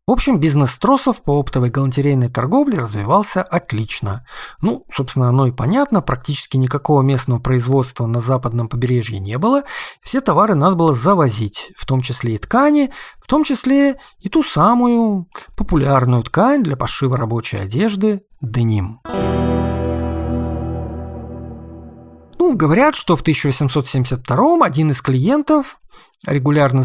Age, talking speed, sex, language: 40-59, 125 wpm, male, Russian